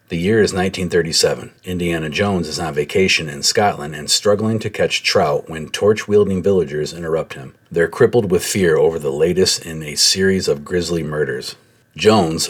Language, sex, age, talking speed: English, male, 40-59, 170 wpm